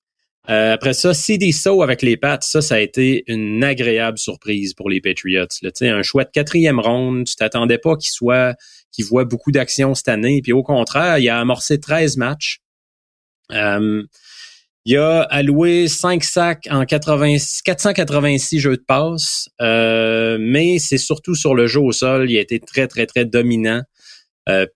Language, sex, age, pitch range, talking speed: French, male, 30-49, 120-150 Hz, 175 wpm